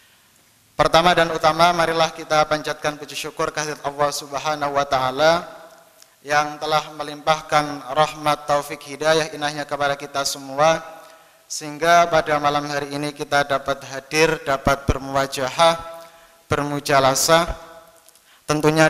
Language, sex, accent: Indonesian, male, native